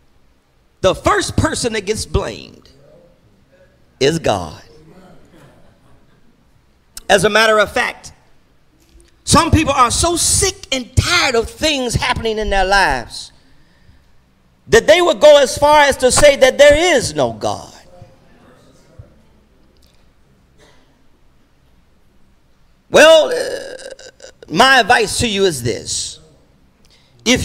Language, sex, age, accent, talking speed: English, male, 50-69, American, 105 wpm